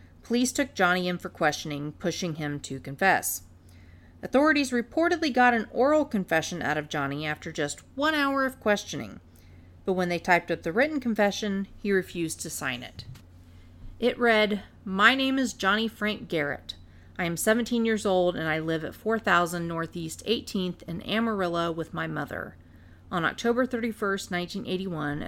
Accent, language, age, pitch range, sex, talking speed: American, English, 40-59, 150-220 Hz, female, 160 wpm